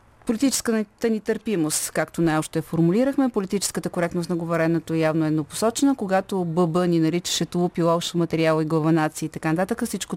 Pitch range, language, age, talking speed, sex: 160-195 Hz, Bulgarian, 40-59, 155 wpm, female